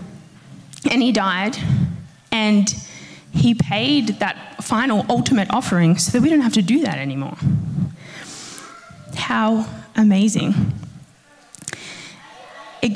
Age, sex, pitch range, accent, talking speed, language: 10-29, female, 160-210 Hz, Australian, 100 wpm, English